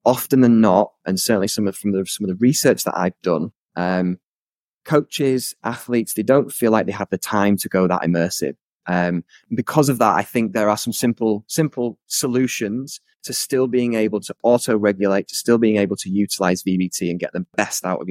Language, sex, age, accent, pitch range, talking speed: English, male, 20-39, British, 100-125 Hz, 210 wpm